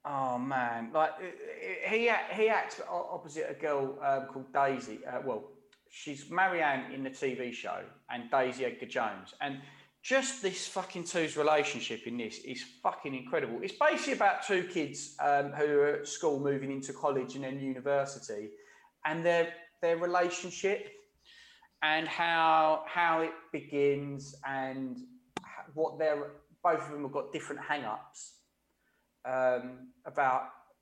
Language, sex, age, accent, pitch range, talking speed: English, male, 30-49, British, 130-175 Hz, 140 wpm